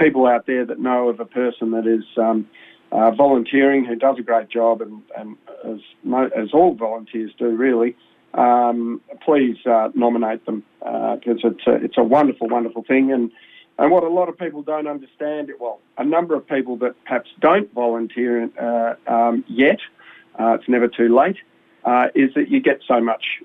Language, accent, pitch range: English, Australian, 115-135 Hz